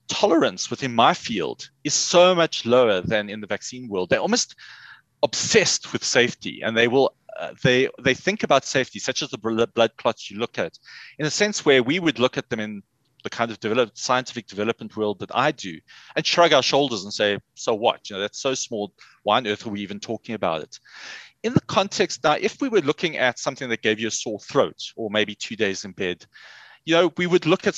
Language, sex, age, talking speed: English, male, 30-49, 225 wpm